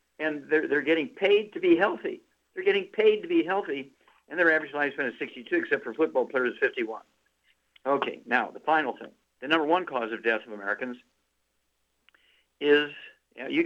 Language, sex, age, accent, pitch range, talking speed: English, male, 60-79, American, 115-165 Hz, 180 wpm